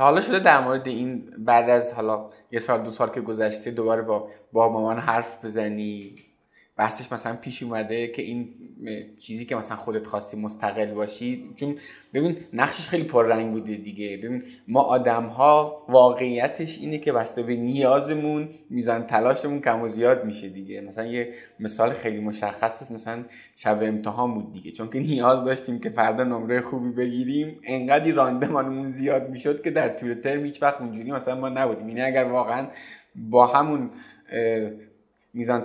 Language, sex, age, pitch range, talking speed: Persian, male, 20-39, 110-130 Hz, 160 wpm